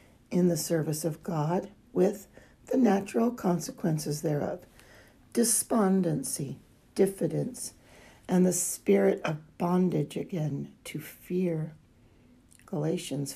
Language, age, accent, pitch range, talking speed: English, 60-79, American, 155-215 Hz, 95 wpm